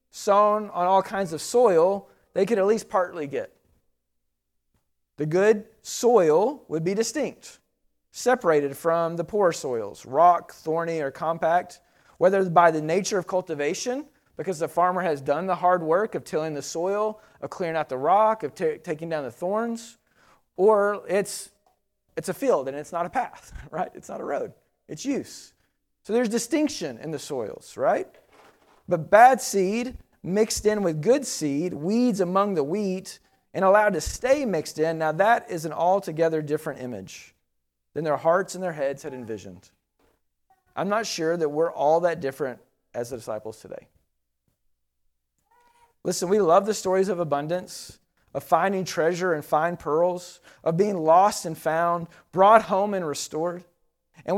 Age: 30-49